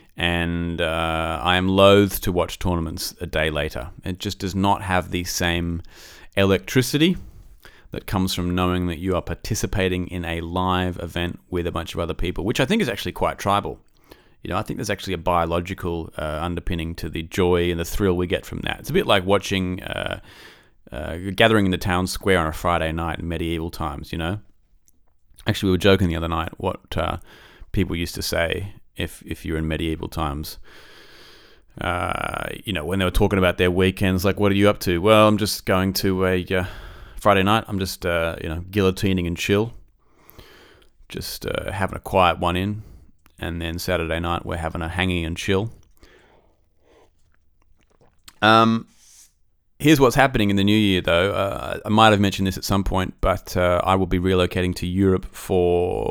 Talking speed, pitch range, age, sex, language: 195 wpm, 85-100 Hz, 30-49, male, English